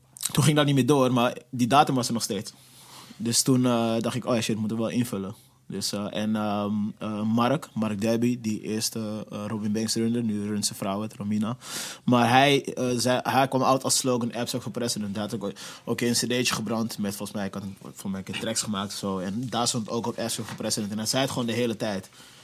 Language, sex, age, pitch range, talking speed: Dutch, male, 20-39, 105-125 Hz, 245 wpm